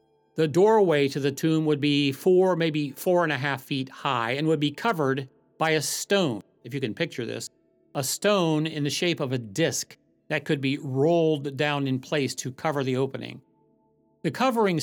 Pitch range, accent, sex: 135-175 Hz, American, male